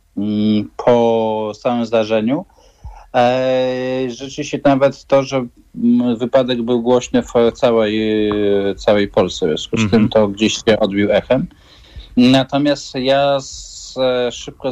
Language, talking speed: Polish, 110 wpm